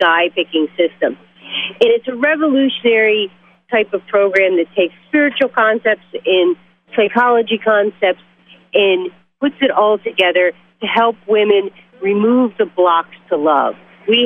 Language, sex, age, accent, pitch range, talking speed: English, female, 40-59, American, 190-245 Hz, 125 wpm